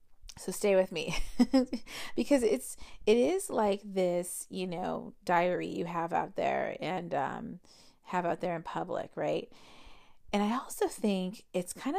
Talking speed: 155 wpm